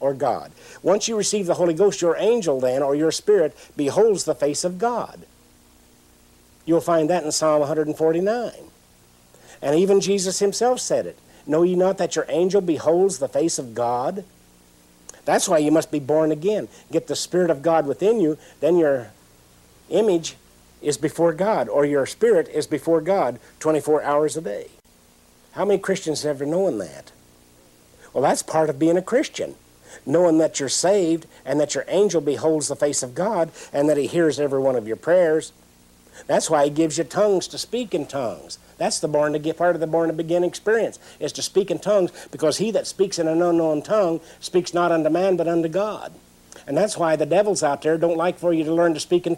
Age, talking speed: 60-79, 200 wpm